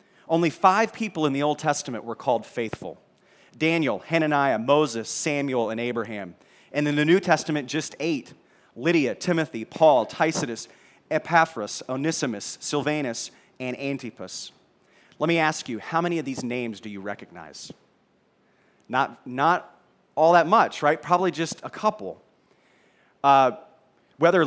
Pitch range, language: 140-170 Hz, English